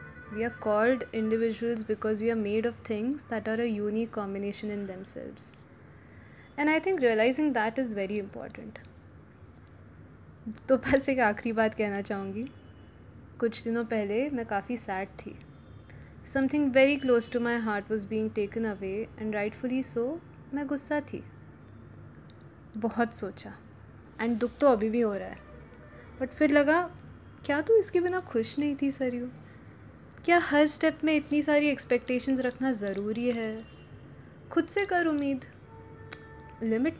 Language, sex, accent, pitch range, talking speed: Hindi, female, native, 220-280 Hz, 150 wpm